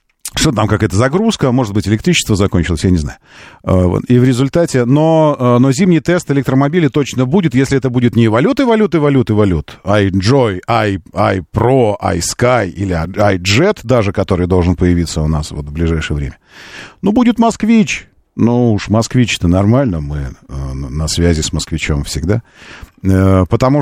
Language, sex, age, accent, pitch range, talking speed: Russian, male, 40-59, native, 90-130 Hz, 145 wpm